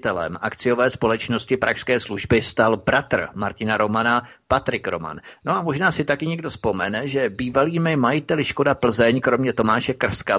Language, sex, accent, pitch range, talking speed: Czech, male, native, 105-125 Hz, 145 wpm